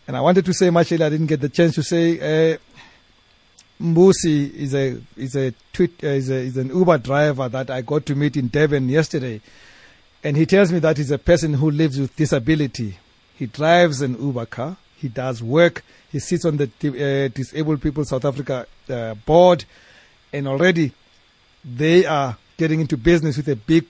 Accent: South African